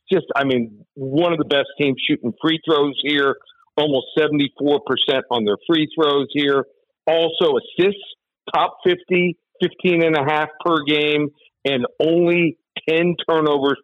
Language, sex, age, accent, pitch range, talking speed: English, male, 50-69, American, 130-165 Hz, 145 wpm